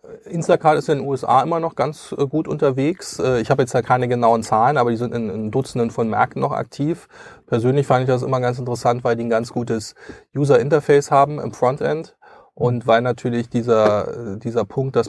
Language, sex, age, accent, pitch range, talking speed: German, male, 30-49, German, 115-140 Hz, 190 wpm